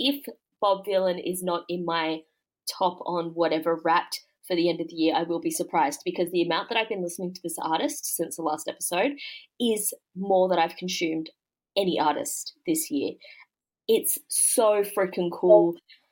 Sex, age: female, 20-39